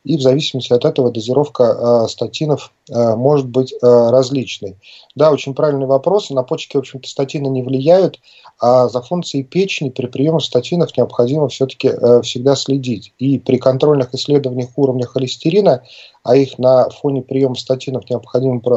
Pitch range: 125-140 Hz